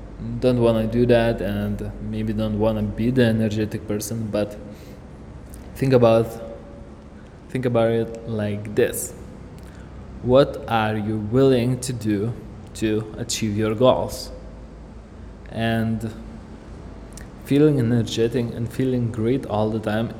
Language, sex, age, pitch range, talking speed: English, male, 20-39, 105-120 Hz, 120 wpm